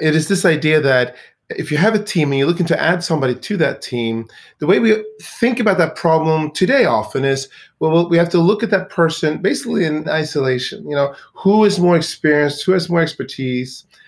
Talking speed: 215 wpm